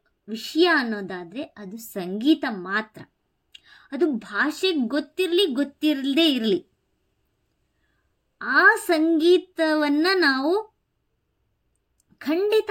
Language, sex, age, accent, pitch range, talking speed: English, male, 20-39, Indian, 210-330 Hz, 65 wpm